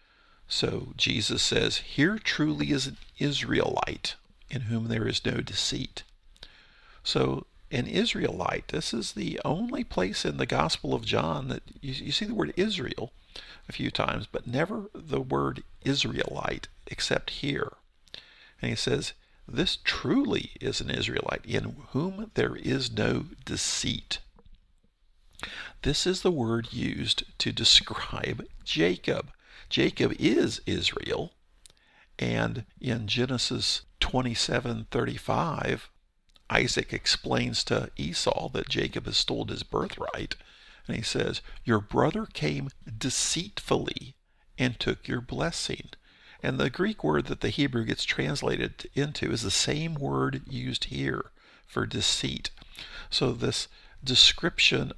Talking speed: 125 wpm